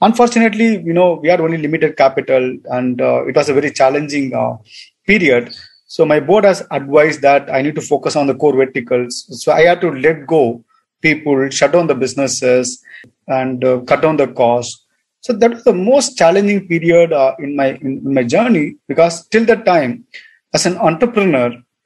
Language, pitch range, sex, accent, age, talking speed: Hindi, 130-180 Hz, male, native, 30-49, 185 wpm